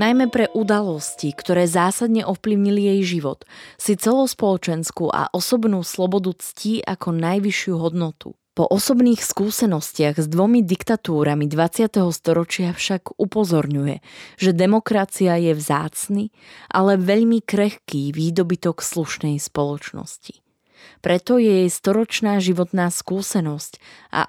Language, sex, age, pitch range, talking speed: Slovak, female, 20-39, 155-200 Hz, 110 wpm